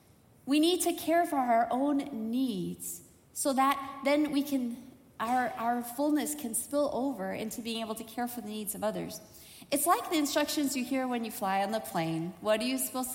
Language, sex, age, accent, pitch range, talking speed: English, female, 30-49, American, 210-290 Hz, 205 wpm